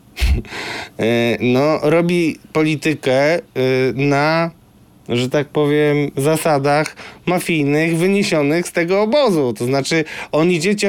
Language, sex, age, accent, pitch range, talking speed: Polish, male, 20-39, native, 140-170 Hz, 95 wpm